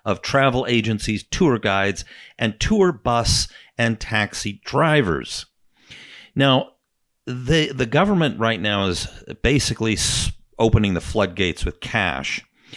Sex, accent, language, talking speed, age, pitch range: male, American, English, 115 wpm, 50-69, 90-120 Hz